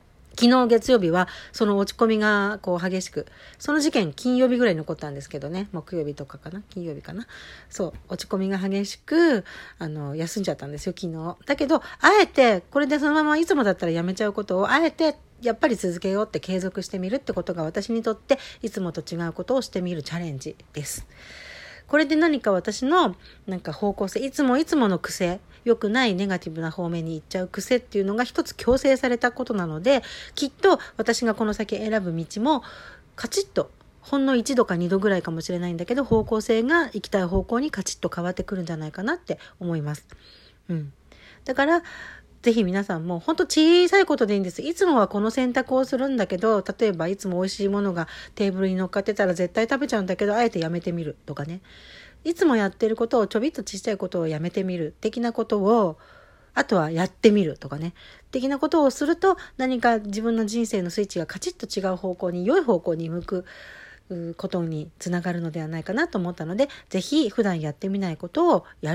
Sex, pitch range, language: female, 175-250 Hz, Japanese